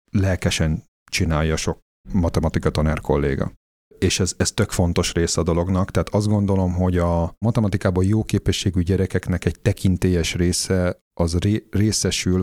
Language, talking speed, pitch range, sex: Hungarian, 135 wpm, 85-100 Hz, male